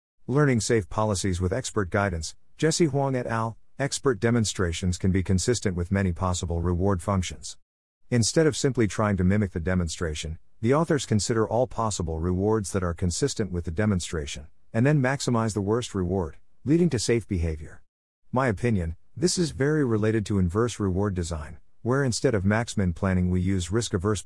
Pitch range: 90-115 Hz